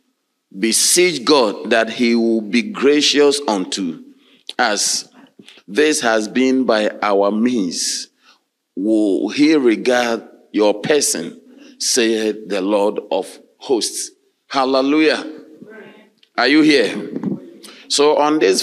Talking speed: 105 wpm